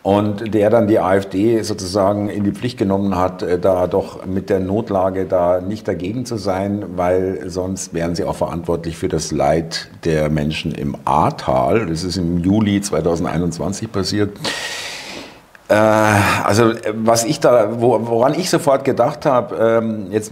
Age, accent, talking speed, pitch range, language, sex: 50-69, German, 150 wpm, 95-115 Hz, German, male